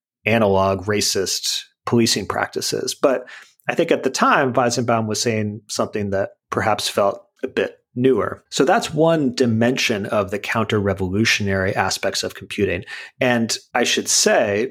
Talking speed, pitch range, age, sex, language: 145 wpm, 95-120 Hz, 30-49, male, English